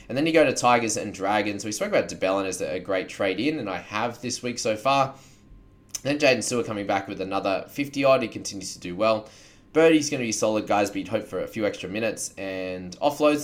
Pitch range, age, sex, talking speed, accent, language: 95-120 Hz, 20-39, male, 230 wpm, Australian, English